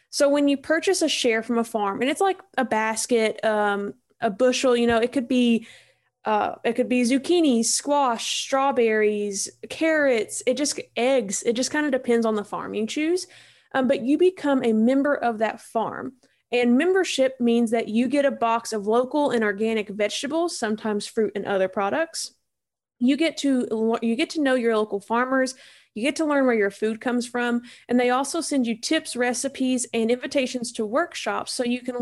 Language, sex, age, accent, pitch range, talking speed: English, female, 20-39, American, 225-275 Hz, 195 wpm